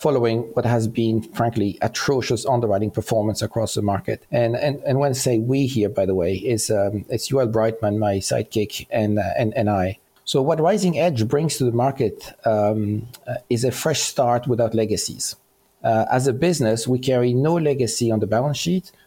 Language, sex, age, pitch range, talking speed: English, male, 40-59, 110-135 Hz, 195 wpm